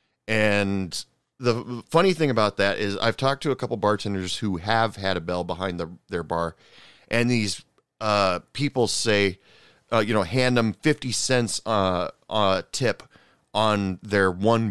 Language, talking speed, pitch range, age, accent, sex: English, 165 wpm, 100-120 Hz, 40-59, American, male